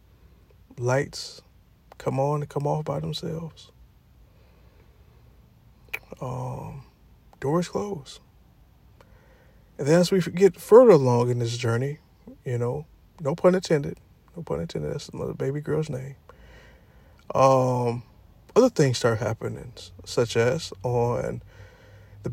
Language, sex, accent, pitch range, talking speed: English, male, American, 115-165 Hz, 115 wpm